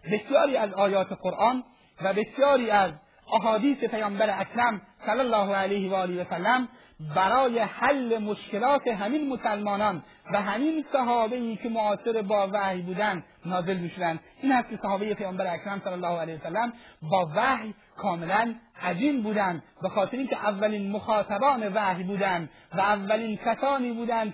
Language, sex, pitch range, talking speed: Persian, male, 195-230 Hz, 140 wpm